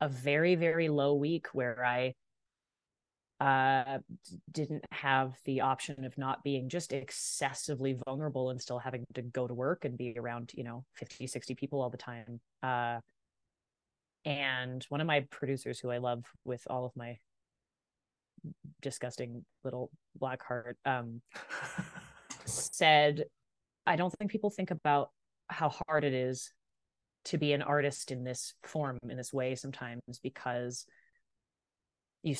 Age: 20-39